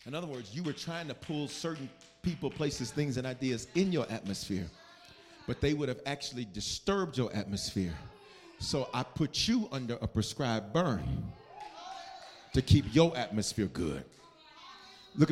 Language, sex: English, male